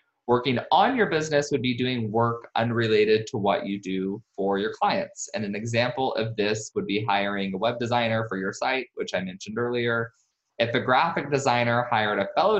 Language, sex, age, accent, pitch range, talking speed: English, male, 20-39, American, 100-125 Hz, 195 wpm